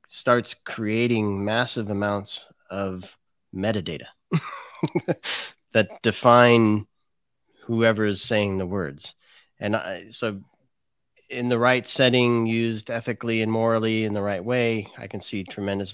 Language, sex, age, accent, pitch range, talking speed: English, male, 30-49, American, 95-115 Hz, 115 wpm